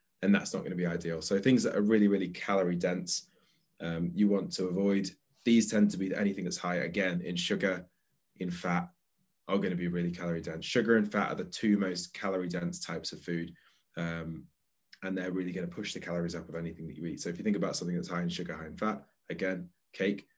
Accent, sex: British, male